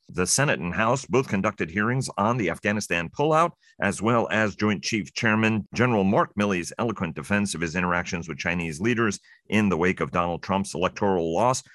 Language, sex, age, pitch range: English, male, 40-59, 85-105 Hz